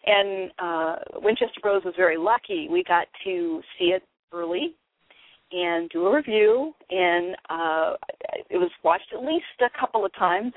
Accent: American